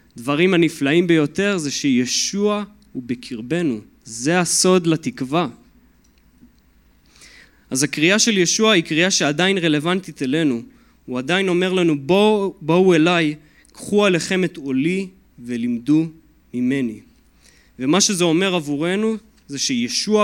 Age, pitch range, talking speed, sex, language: 20-39, 130-185 Hz, 115 wpm, male, Hebrew